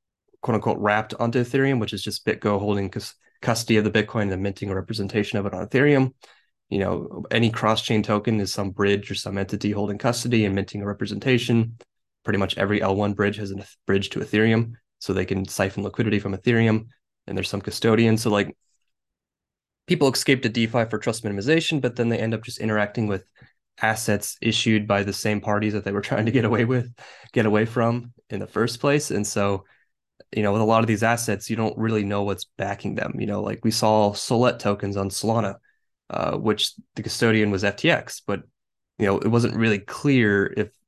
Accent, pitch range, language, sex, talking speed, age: American, 100-115 Hz, English, male, 205 wpm, 20-39